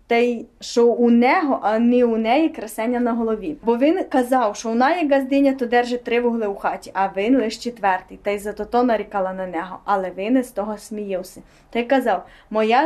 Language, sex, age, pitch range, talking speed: Ukrainian, female, 20-39, 205-255 Hz, 200 wpm